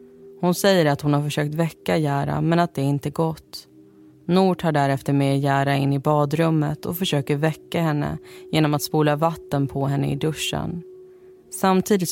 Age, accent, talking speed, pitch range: 20-39, native, 170 wpm, 145-170 Hz